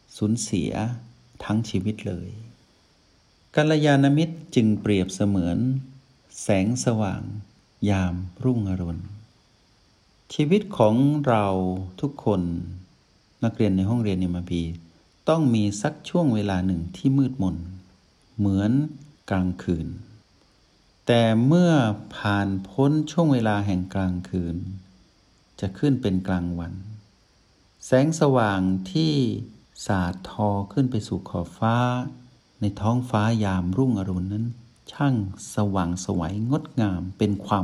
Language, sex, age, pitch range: Thai, male, 60-79, 95-130 Hz